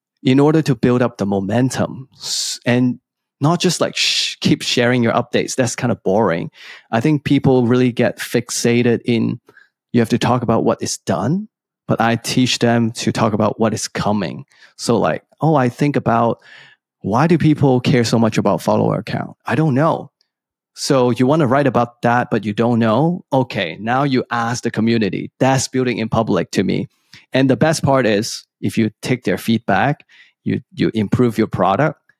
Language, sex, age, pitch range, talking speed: English, male, 30-49, 115-140 Hz, 185 wpm